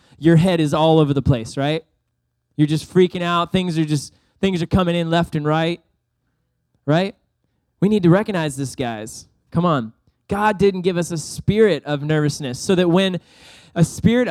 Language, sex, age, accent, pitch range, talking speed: English, male, 20-39, American, 145-175 Hz, 185 wpm